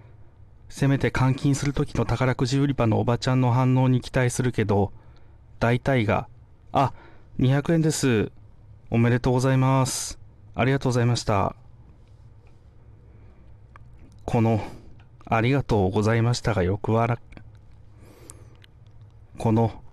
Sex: male